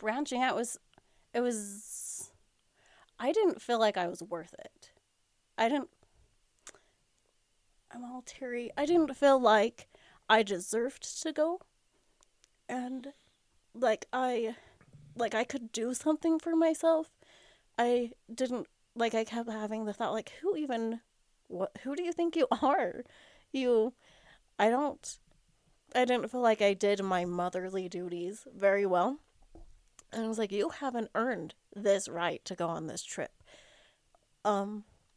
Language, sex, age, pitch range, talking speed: English, female, 30-49, 200-260 Hz, 140 wpm